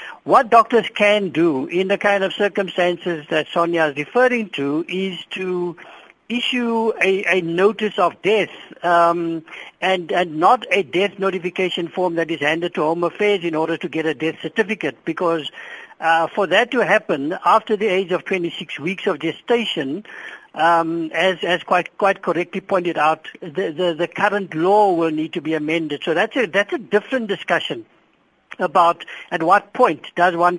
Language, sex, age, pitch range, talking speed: English, male, 60-79, 165-210 Hz, 170 wpm